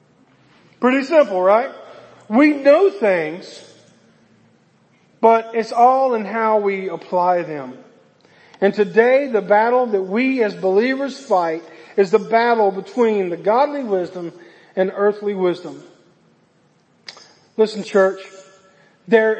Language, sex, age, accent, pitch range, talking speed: English, male, 40-59, American, 195-265 Hz, 110 wpm